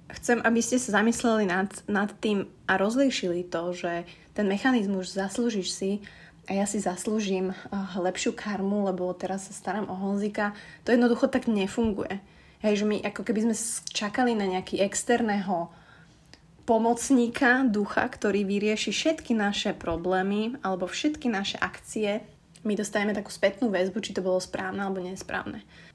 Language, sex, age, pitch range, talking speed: Slovak, female, 20-39, 185-225 Hz, 150 wpm